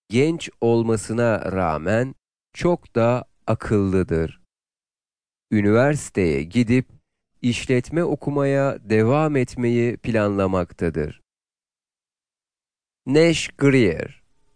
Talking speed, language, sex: 60 wpm, Italian, male